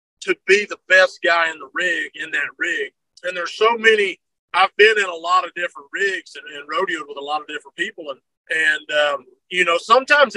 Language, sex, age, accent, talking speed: English, male, 40-59, American, 220 wpm